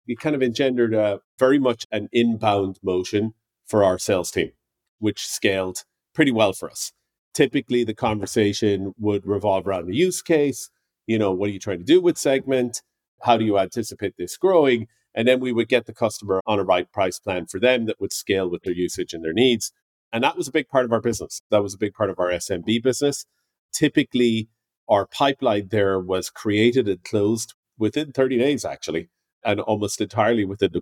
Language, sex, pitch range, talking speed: English, male, 100-120 Hz, 200 wpm